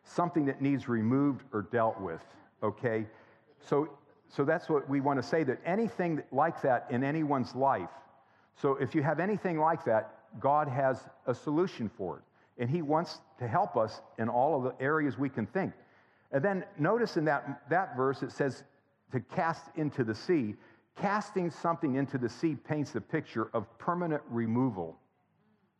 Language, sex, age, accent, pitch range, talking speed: English, male, 50-69, American, 110-150 Hz, 175 wpm